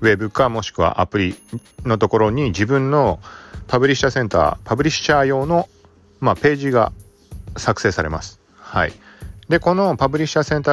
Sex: male